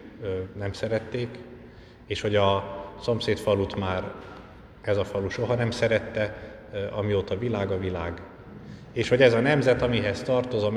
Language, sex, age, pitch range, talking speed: Hungarian, male, 50-69, 95-110 Hz, 140 wpm